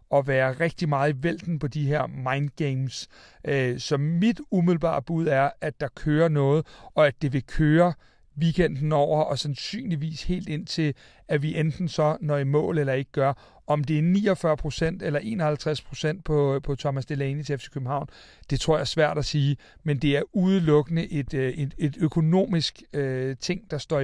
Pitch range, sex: 140-160 Hz, male